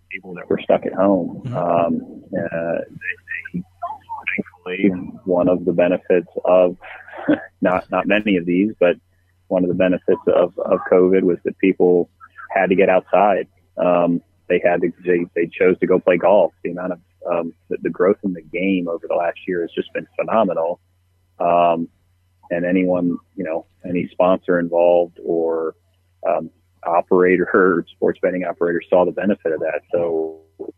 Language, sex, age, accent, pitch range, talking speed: English, male, 30-49, American, 85-95 Hz, 170 wpm